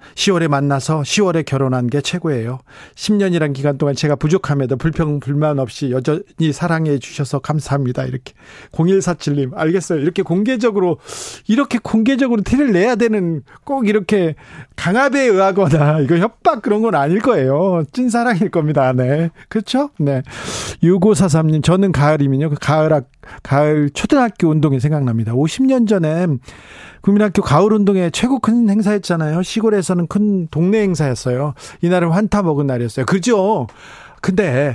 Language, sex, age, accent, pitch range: Korean, male, 40-59, native, 145-200 Hz